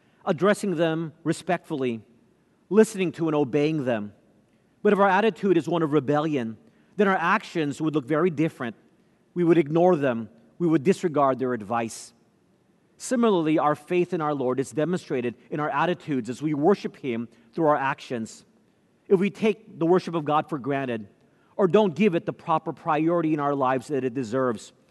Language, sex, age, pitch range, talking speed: English, male, 40-59, 135-185 Hz, 175 wpm